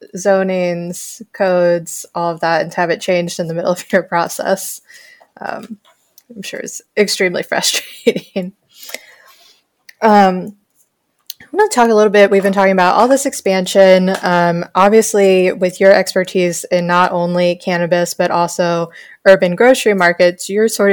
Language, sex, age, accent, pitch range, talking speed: English, female, 20-39, American, 175-195 Hz, 150 wpm